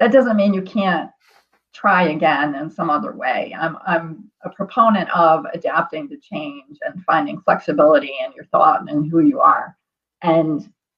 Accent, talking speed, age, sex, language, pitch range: American, 170 wpm, 40-59, female, English, 170-210 Hz